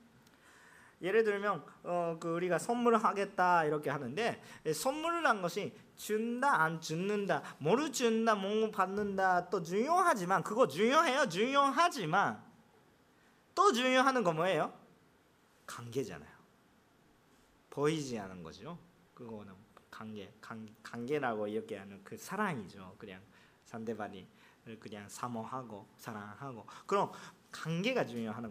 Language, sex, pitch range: Korean, male, 160-255 Hz